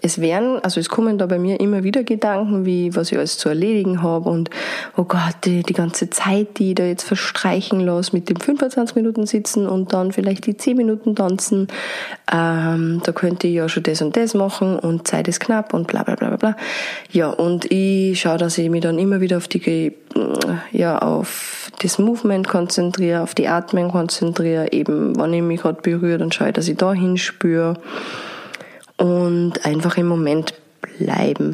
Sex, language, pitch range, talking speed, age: female, German, 175-220 Hz, 190 wpm, 20-39